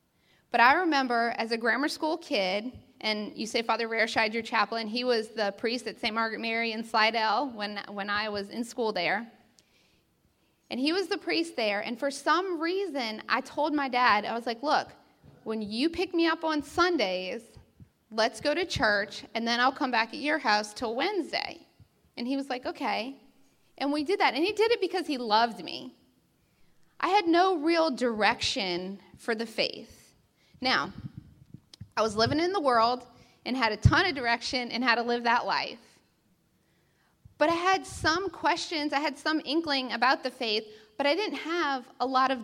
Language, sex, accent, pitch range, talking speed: English, female, American, 225-310 Hz, 190 wpm